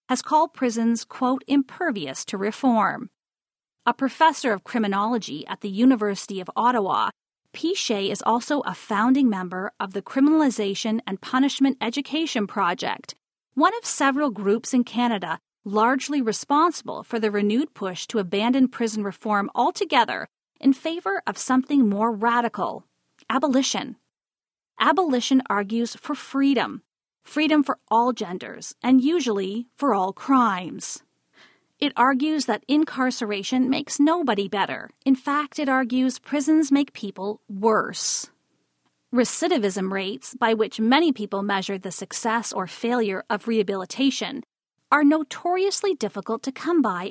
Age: 40-59